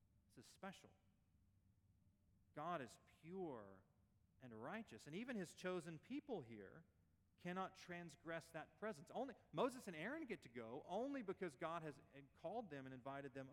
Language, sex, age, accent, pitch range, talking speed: English, male, 40-59, American, 100-160 Hz, 145 wpm